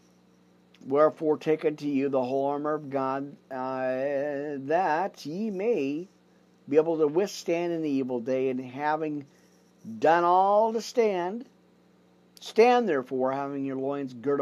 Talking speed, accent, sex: 135 wpm, American, male